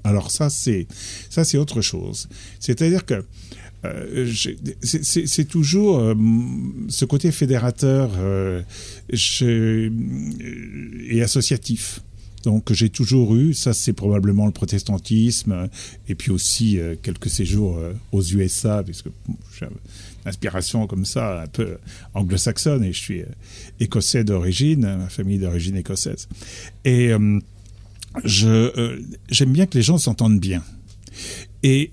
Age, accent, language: 50-69, French, French